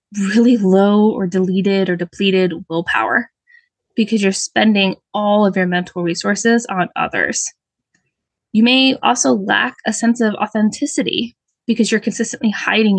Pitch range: 185-240 Hz